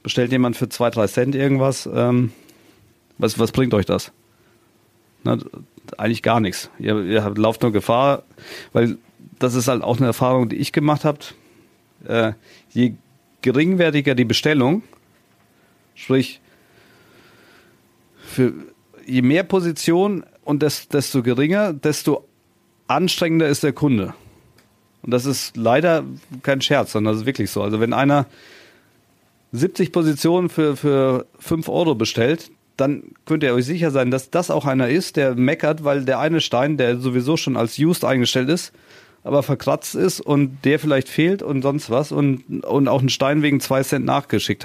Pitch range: 120-145 Hz